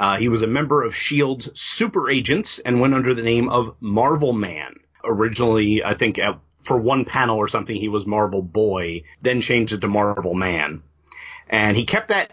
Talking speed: 195 wpm